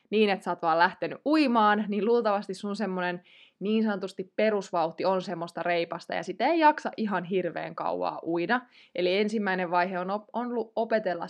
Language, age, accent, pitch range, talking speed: Finnish, 20-39, native, 185-240 Hz, 160 wpm